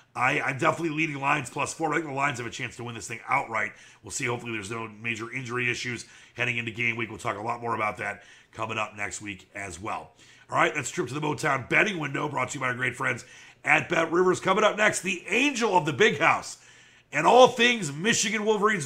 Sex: male